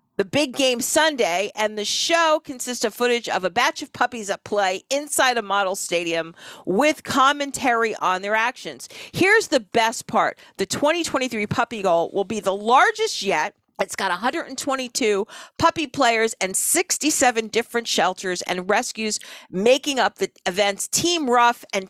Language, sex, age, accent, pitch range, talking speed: English, female, 50-69, American, 200-265 Hz, 155 wpm